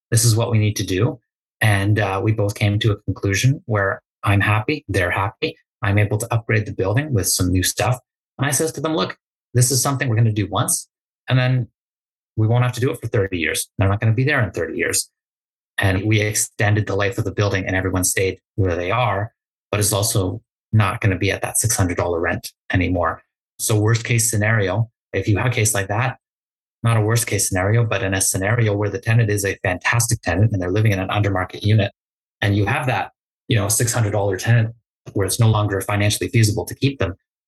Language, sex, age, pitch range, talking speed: English, male, 30-49, 100-115 Hz, 225 wpm